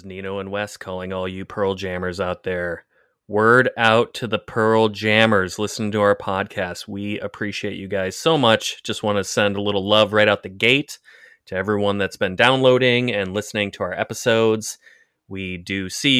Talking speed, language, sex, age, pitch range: 185 wpm, English, male, 30-49, 95-115 Hz